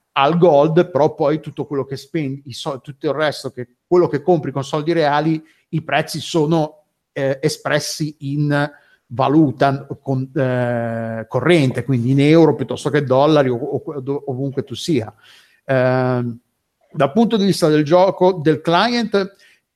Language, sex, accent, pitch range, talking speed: Italian, male, native, 130-155 Hz, 145 wpm